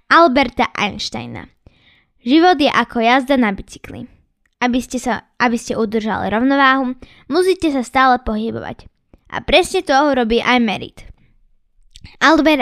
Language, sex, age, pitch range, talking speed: Slovak, female, 10-29, 225-285 Hz, 125 wpm